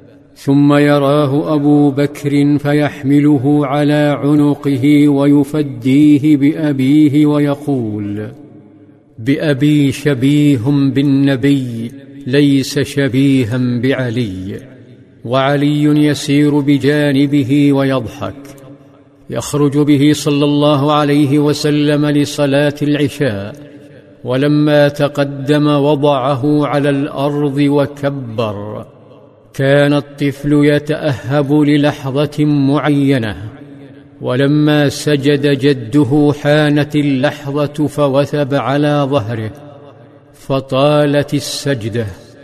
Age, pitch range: 50-69, 140-145 Hz